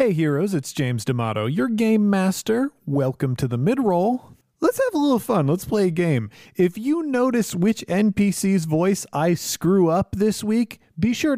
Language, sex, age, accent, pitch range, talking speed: English, male, 30-49, American, 130-200 Hz, 180 wpm